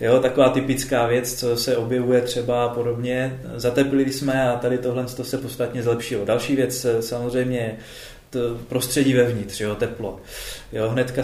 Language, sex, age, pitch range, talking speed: Czech, male, 20-39, 115-135 Hz, 150 wpm